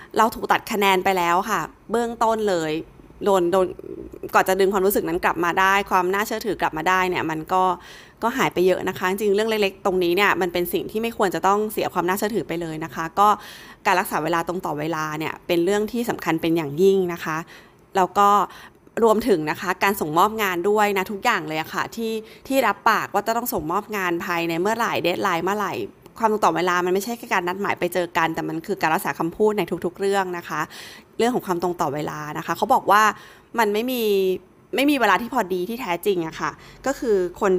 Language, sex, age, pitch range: Thai, female, 20-39, 170-215 Hz